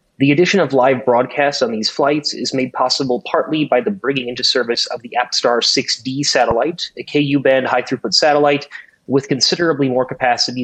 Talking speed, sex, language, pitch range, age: 170 wpm, male, English, 125-145 Hz, 20-39